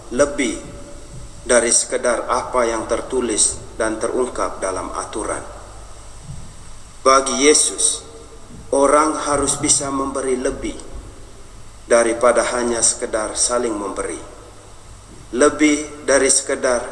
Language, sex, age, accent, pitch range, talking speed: Indonesian, male, 40-59, native, 105-145 Hz, 90 wpm